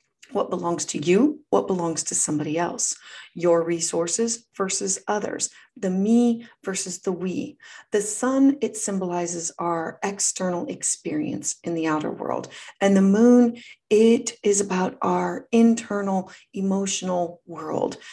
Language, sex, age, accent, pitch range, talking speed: English, female, 40-59, American, 180-235 Hz, 130 wpm